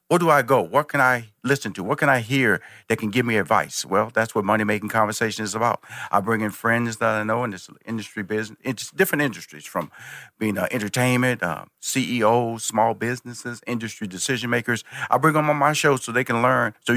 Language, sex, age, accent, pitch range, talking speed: English, male, 50-69, American, 105-130 Hz, 205 wpm